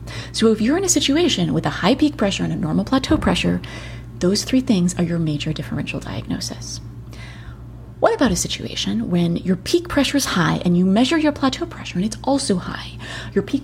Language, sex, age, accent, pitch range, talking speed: English, female, 30-49, American, 160-245 Hz, 200 wpm